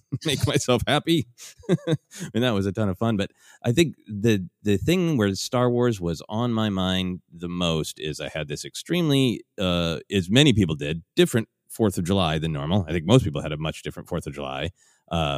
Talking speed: 205 wpm